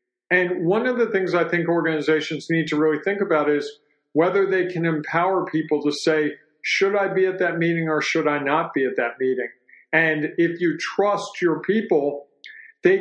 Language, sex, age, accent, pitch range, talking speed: English, male, 50-69, American, 155-195 Hz, 195 wpm